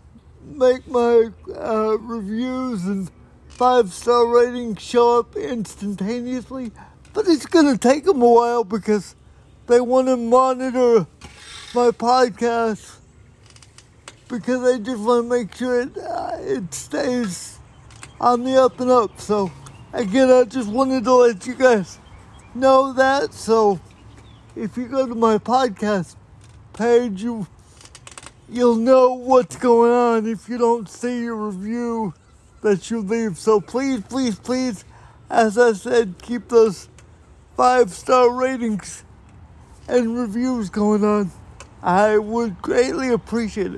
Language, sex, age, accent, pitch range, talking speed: English, male, 50-69, American, 190-250 Hz, 125 wpm